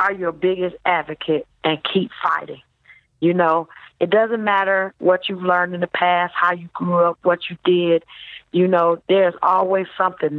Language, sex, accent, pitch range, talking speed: English, female, American, 175-210 Hz, 175 wpm